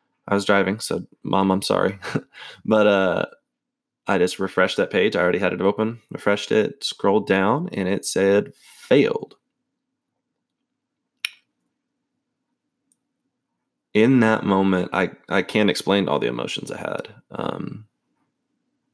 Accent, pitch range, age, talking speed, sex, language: American, 95-125 Hz, 20-39, 125 wpm, male, English